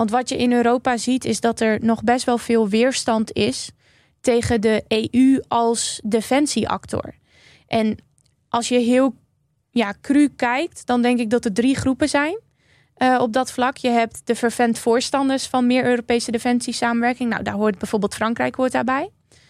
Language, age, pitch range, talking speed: Dutch, 20-39, 215-245 Hz, 170 wpm